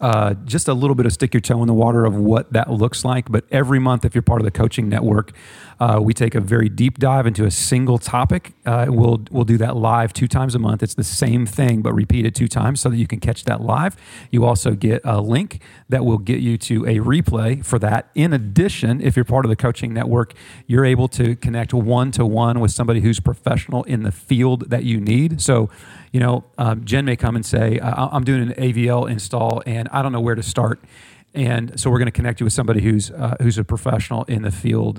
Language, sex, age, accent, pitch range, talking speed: English, male, 40-59, American, 110-125 Hz, 240 wpm